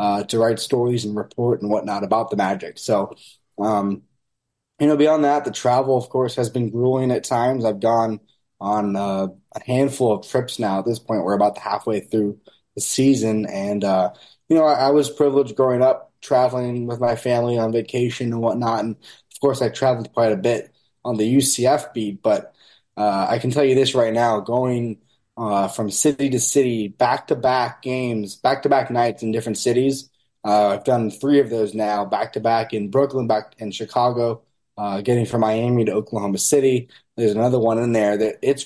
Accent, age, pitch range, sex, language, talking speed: American, 20-39, 110-125 Hz, male, English, 200 wpm